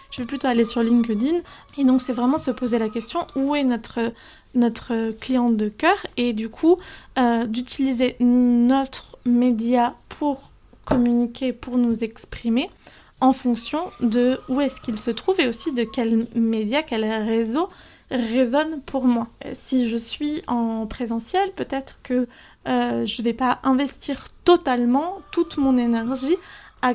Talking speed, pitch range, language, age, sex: 155 wpm, 230-275 Hz, French, 20-39, female